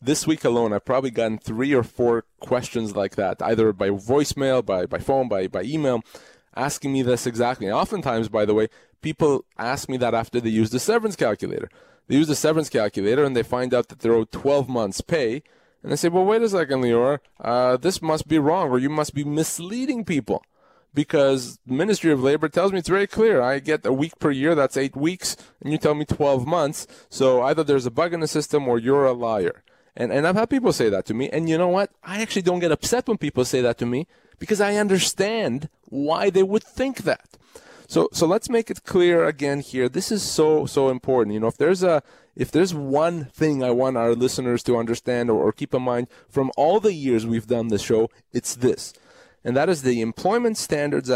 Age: 20-39